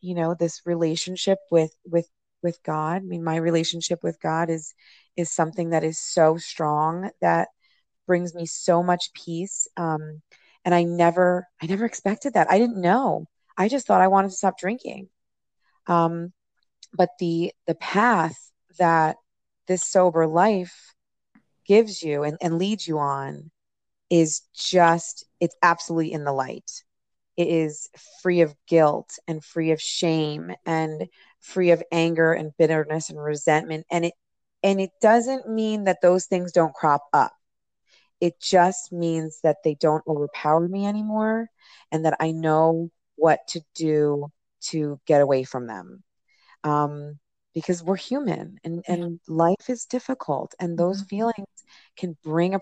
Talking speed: 150 wpm